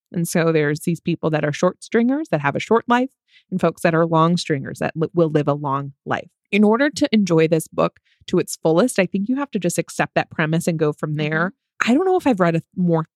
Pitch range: 160-205 Hz